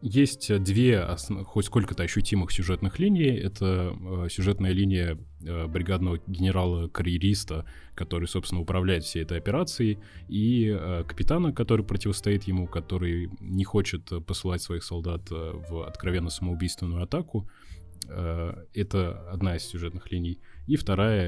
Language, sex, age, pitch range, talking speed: Russian, male, 20-39, 85-100 Hz, 130 wpm